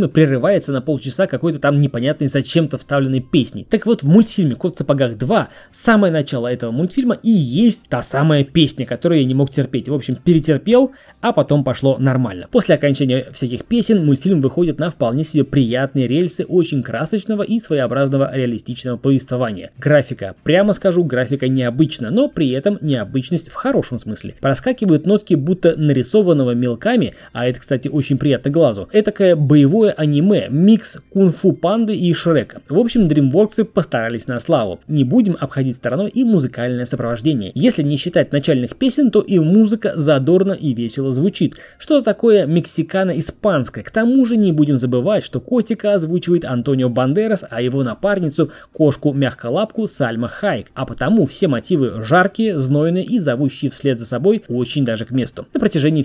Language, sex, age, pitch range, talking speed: Russian, male, 20-39, 130-195 Hz, 160 wpm